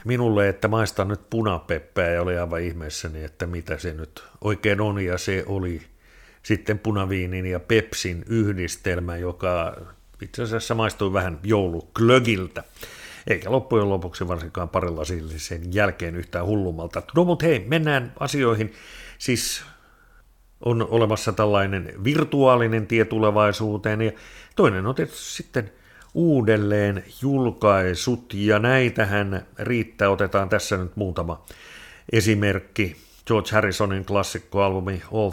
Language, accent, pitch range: Finnish, native, 90-110 Hz